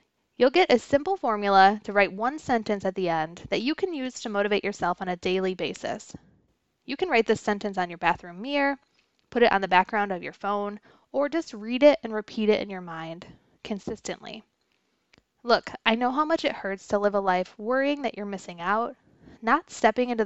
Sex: female